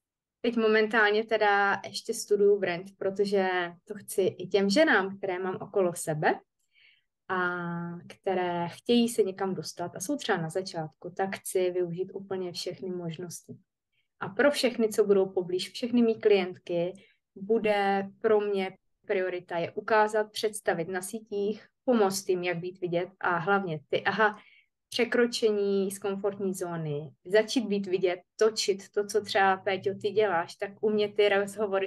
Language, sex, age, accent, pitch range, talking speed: Czech, female, 20-39, native, 180-215 Hz, 150 wpm